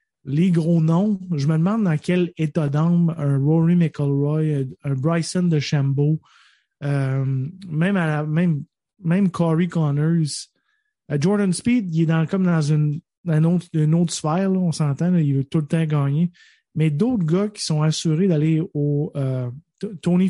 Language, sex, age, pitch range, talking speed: French, male, 20-39, 150-180 Hz, 170 wpm